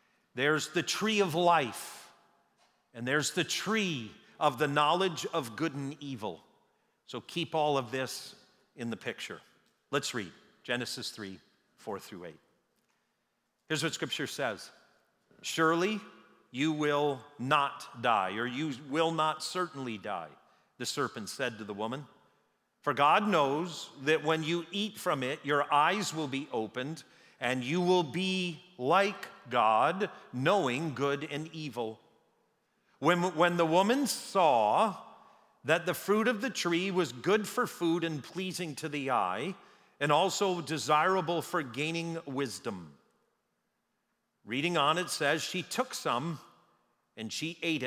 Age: 40-59